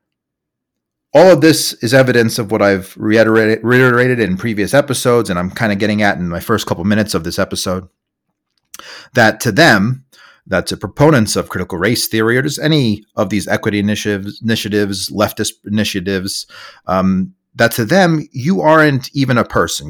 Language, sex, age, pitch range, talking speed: English, male, 30-49, 105-140 Hz, 165 wpm